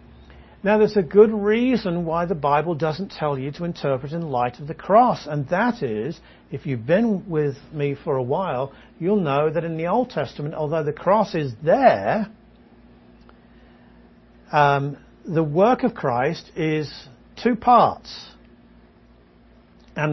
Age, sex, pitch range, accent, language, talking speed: 50-69, male, 140-200 Hz, British, English, 150 wpm